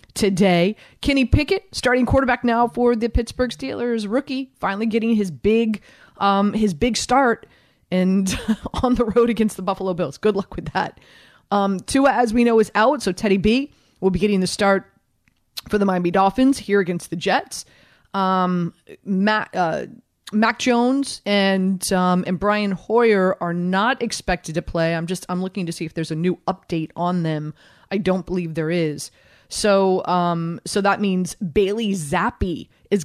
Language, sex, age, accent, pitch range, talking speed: English, female, 30-49, American, 180-225 Hz, 175 wpm